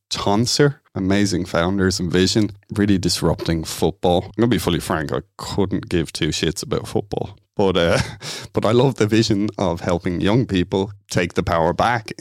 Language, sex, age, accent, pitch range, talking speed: English, male, 30-49, Irish, 90-105 Hz, 175 wpm